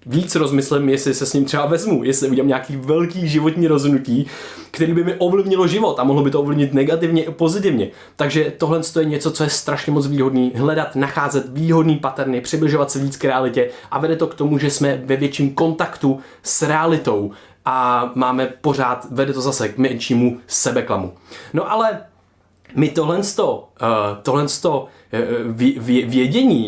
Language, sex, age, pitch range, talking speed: Czech, male, 20-39, 125-160 Hz, 160 wpm